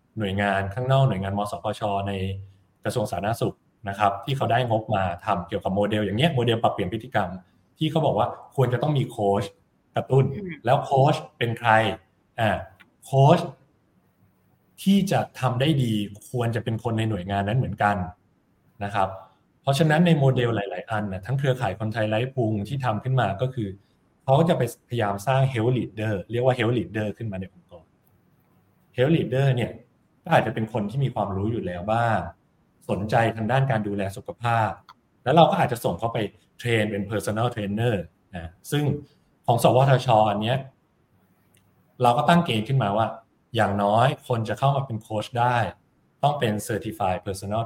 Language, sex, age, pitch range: Thai, male, 20-39, 100-130 Hz